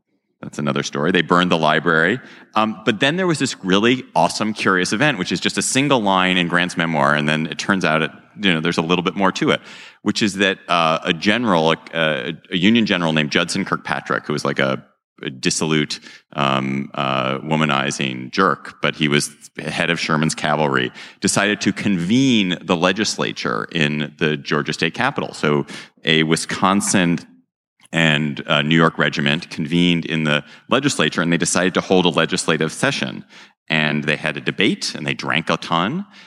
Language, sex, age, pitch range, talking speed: English, male, 30-49, 75-105 Hz, 185 wpm